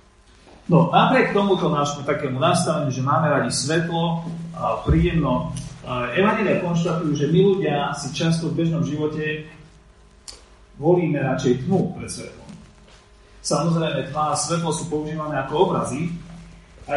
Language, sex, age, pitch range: Slovak, male, 40-59, 125-170 Hz